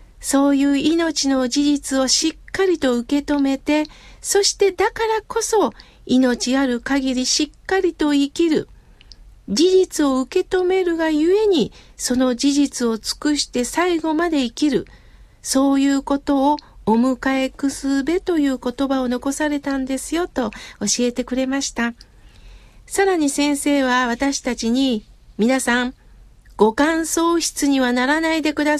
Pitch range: 255-335 Hz